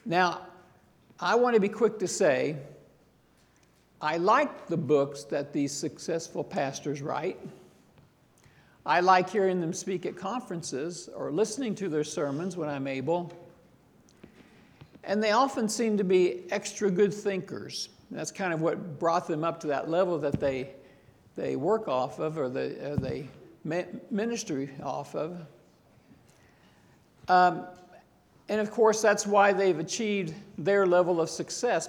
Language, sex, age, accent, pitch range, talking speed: English, male, 60-79, American, 160-195 Hz, 145 wpm